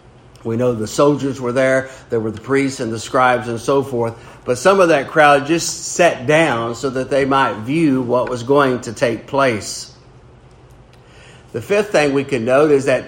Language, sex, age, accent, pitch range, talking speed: English, male, 50-69, American, 120-145 Hz, 195 wpm